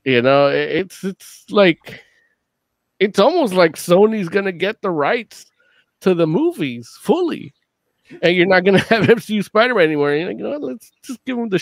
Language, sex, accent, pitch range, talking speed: English, male, American, 125-195 Hz, 185 wpm